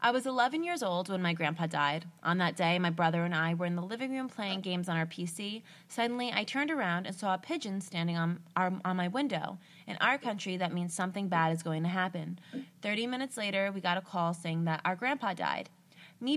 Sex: female